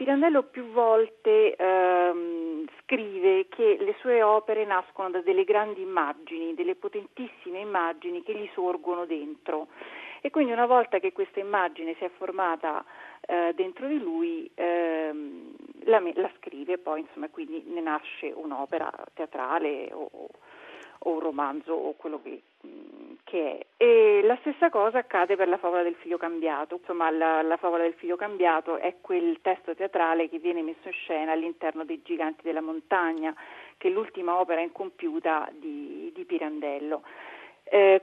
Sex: female